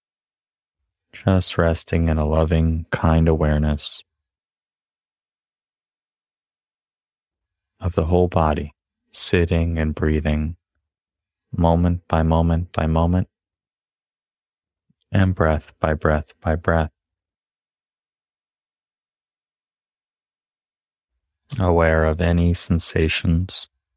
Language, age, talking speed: English, 30-49, 75 wpm